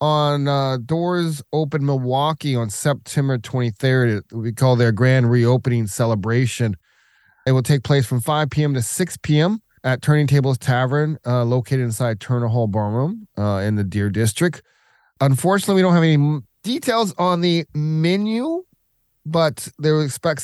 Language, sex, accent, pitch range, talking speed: English, male, American, 120-155 Hz, 150 wpm